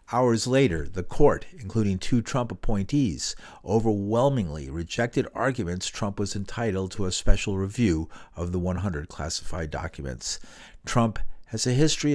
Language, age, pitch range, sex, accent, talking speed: English, 50-69, 90-120 Hz, male, American, 135 wpm